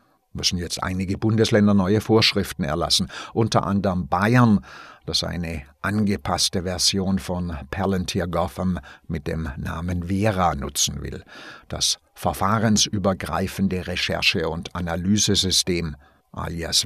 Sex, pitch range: male, 90-110 Hz